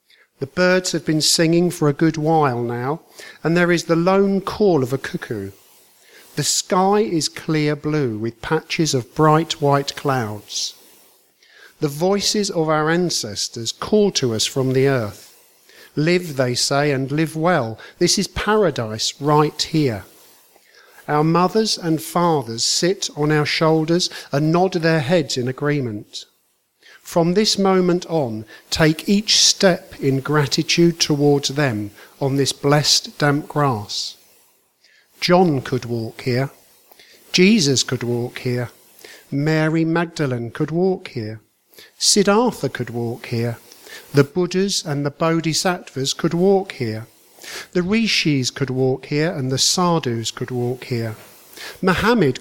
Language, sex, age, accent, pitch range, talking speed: English, male, 50-69, British, 130-175 Hz, 135 wpm